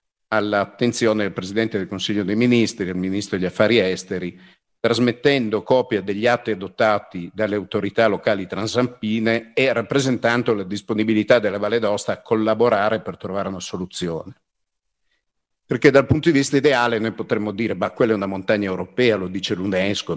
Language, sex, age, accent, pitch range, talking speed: Italian, male, 50-69, native, 95-115 Hz, 155 wpm